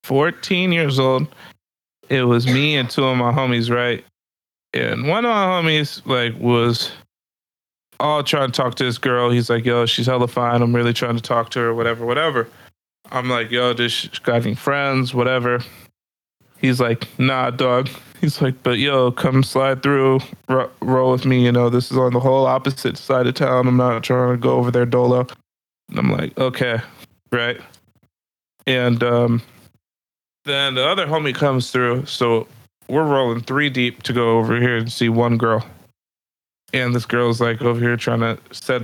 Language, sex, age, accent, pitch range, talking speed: English, male, 20-39, American, 120-135 Hz, 180 wpm